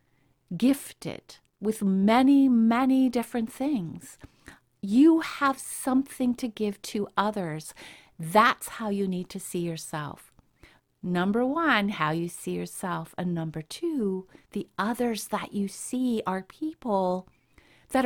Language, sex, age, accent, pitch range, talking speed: English, female, 50-69, American, 180-255 Hz, 125 wpm